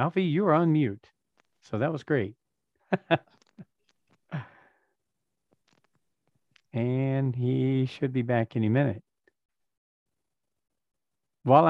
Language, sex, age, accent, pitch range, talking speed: English, male, 40-59, American, 125-155 Hz, 80 wpm